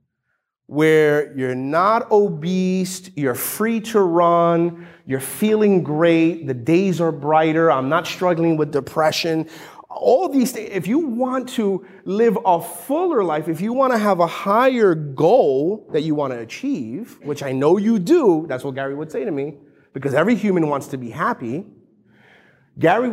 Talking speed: 160 wpm